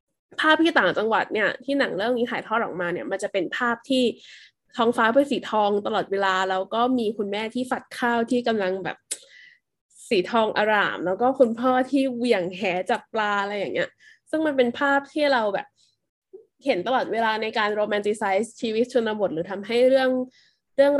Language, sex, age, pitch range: Thai, female, 20-39, 200-255 Hz